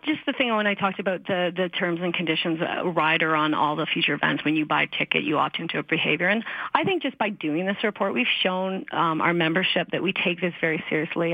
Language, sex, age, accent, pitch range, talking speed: English, female, 40-59, American, 170-195 Hz, 255 wpm